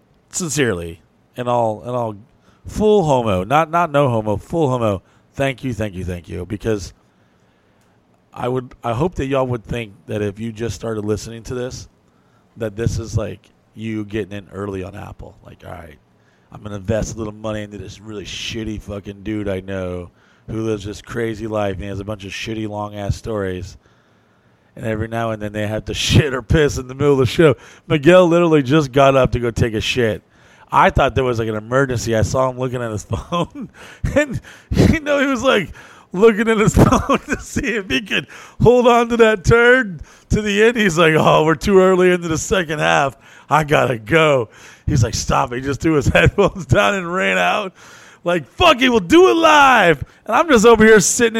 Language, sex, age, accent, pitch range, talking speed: English, male, 30-49, American, 105-165 Hz, 210 wpm